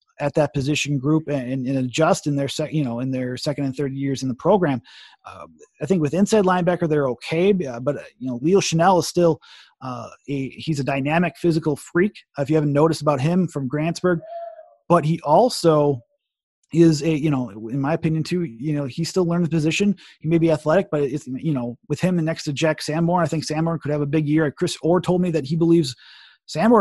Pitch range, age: 145-170 Hz, 30-49